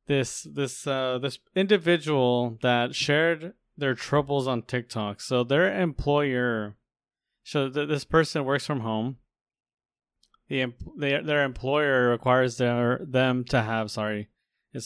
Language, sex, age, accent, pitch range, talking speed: English, male, 20-39, American, 120-145 Hz, 135 wpm